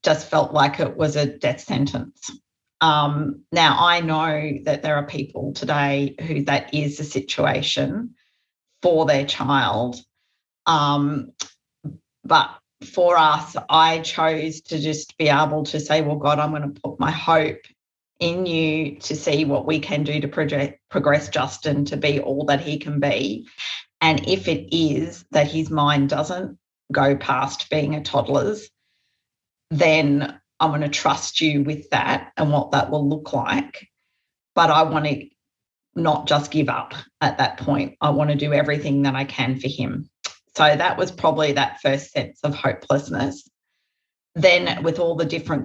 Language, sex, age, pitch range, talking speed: English, female, 30-49, 140-155 Hz, 165 wpm